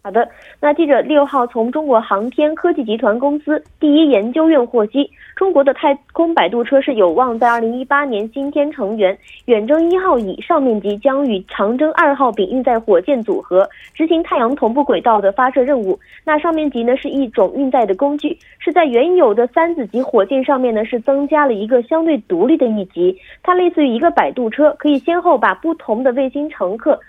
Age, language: 20-39, Korean